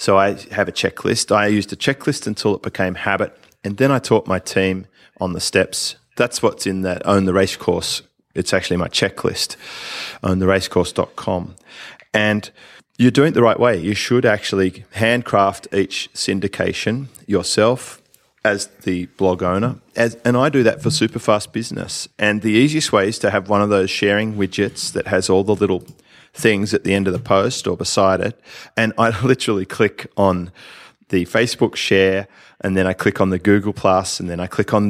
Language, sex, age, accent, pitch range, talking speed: English, male, 30-49, Australian, 95-115 Hz, 190 wpm